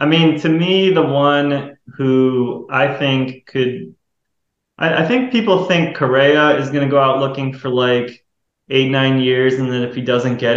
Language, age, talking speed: English, 20-39, 185 wpm